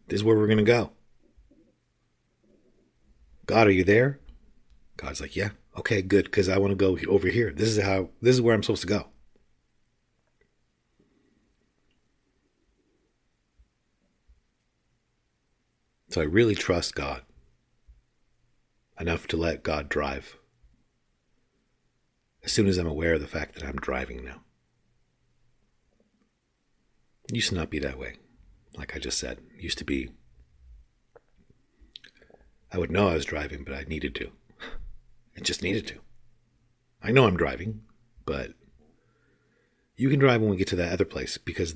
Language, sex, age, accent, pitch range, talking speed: English, male, 50-69, American, 70-110 Hz, 140 wpm